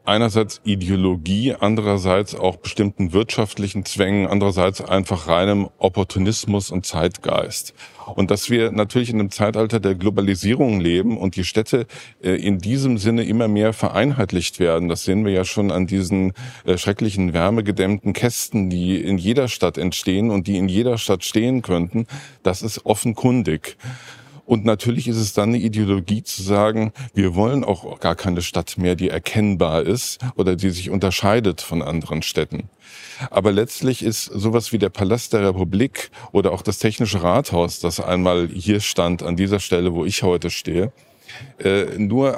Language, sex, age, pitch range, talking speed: German, male, 50-69, 95-115 Hz, 155 wpm